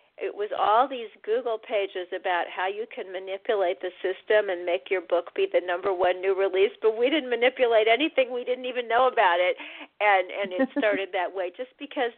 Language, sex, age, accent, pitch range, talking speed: English, female, 50-69, American, 175-290 Hz, 205 wpm